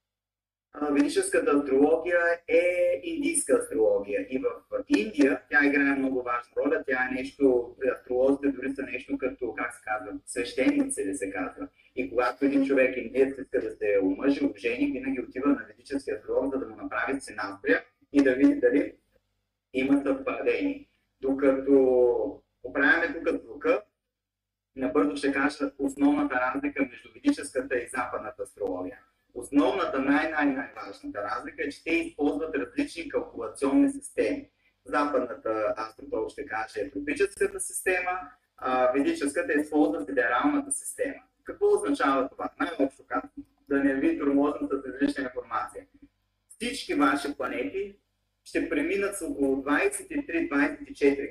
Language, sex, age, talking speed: Bulgarian, male, 30-49, 140 wpm